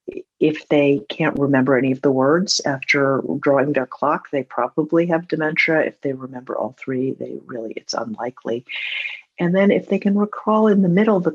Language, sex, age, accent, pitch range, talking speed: English, female, 50-69, American, 130-160 Hz, 185 wpm